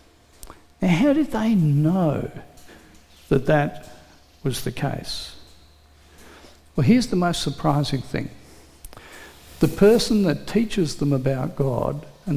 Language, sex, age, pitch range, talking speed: English, male, 60-79, 120-170 Hz, 110 wpm